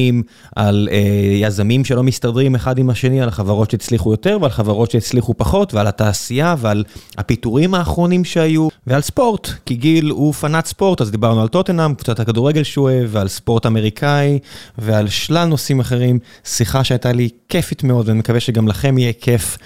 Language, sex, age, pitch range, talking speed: Hebrew, male, 20-39, 115-150 Hz, 160 wpm